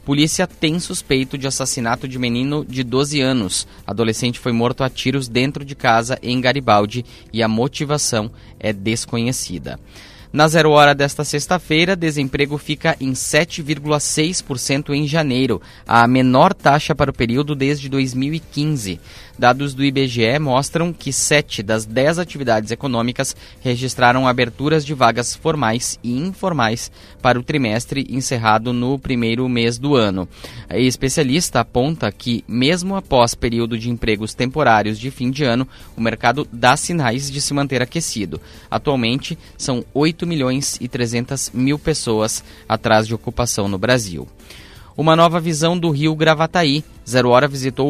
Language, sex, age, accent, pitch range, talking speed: Portuguese, male, 20-39, Brazilian, 115-145 Hz, 145 wpm